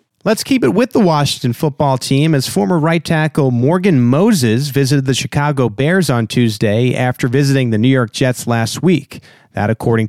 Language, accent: English, American